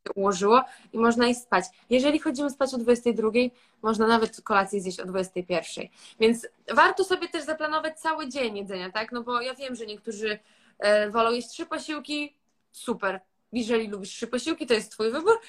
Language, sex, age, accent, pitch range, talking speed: Polish, female, 20-39, native, 200-255 Hz, 180 wpm